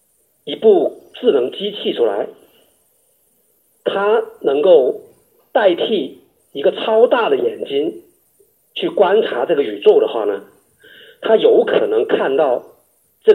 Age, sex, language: 50-69, male, Chinese